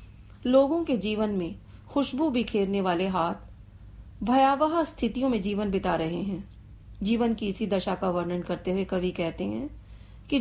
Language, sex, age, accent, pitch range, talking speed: Hindi, female, 40-59, native, 180-240 Hz, 155 wpm